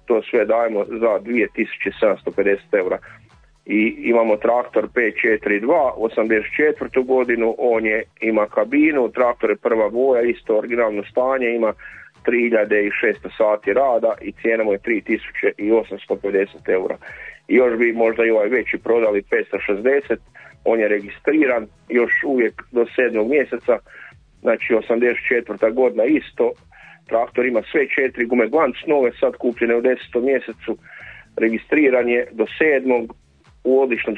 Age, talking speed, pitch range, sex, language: 40-59, 125 wpm, 110-130 Hz, male, English